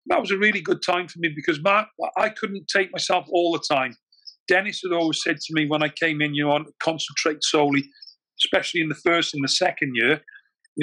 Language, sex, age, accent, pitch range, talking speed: English, male, 40-59, British, 150-170 Hz, 220 wpm